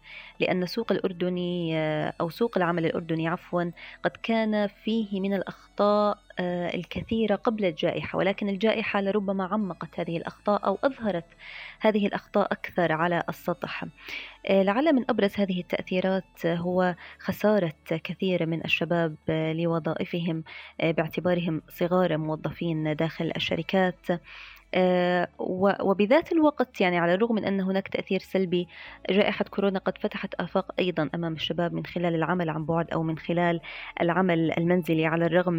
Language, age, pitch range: Arabic, 20-39, 170-200 Hz